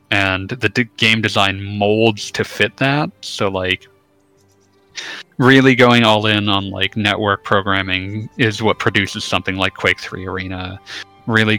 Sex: male